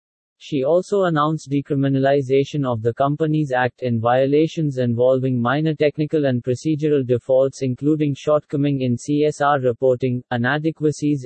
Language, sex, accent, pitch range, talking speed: English, male, Indian, 125-150 Hz, 115 wpm